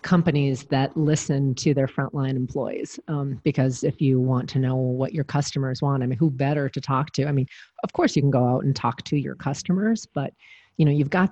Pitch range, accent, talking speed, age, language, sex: 135-155 Hz, American, 230 wpm, 40-59, English, female